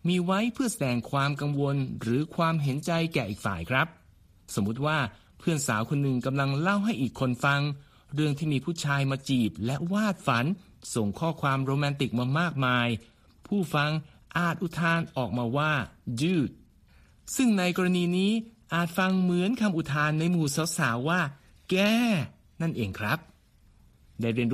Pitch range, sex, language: 120-165 Hz, male, Thai